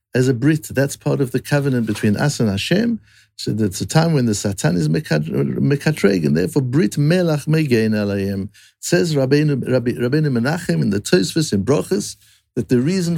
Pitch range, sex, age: 105-150 Hz, male, 60-79